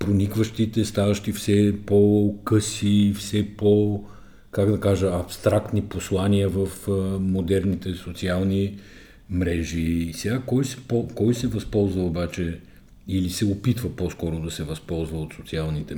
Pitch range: 85-115 Hz